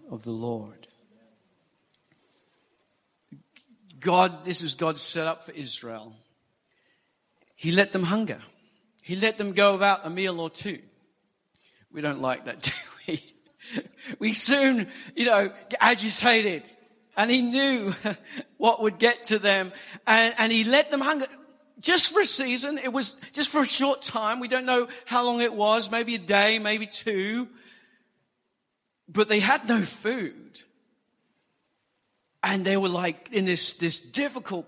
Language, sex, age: English, male, 50-69